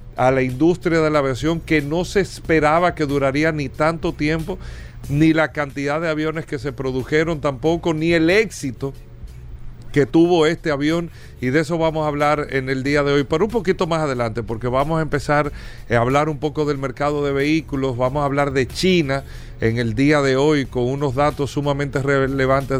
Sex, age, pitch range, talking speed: male, 40-59, 135-160 Hz, 195 wpm